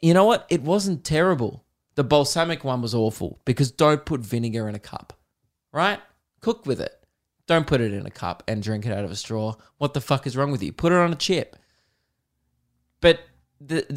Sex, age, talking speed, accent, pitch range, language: male, 20-39, 210 wpm, Australian, 115-150 Hz, English